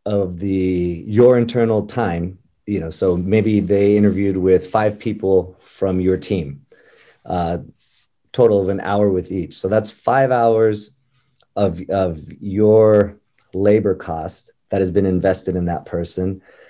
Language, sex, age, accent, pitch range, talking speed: English, male, 30-49, American, 95-110 Hz, 145 wpm